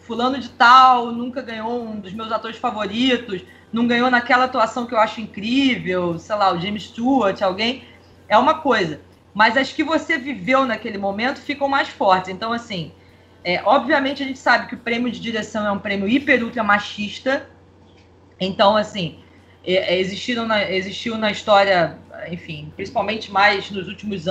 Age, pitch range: 20-39, 200-270 Hz